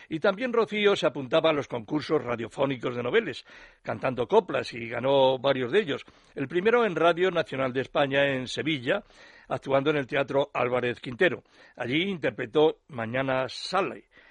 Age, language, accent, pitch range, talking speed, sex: 60-79, Spanish, Spanish, 130-165 Hz, 155 wpm, male